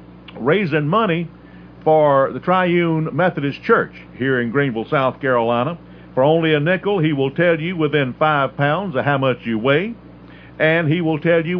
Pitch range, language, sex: 130-180 Hz, English, male